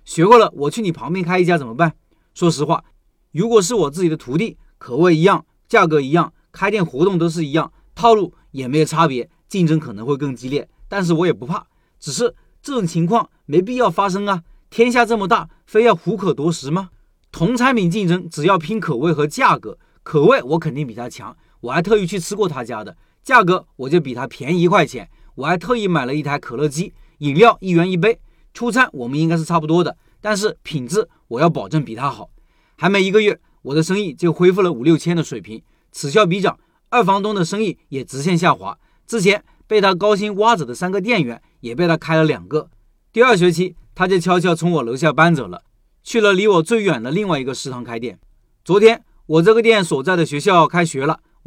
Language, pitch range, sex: Chinese, 150-195 Hz, male